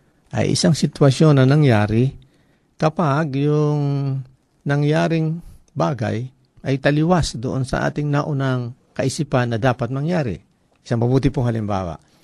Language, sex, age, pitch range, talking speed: Filipino, male, 50-69, 105-145 Hz, 110 wpm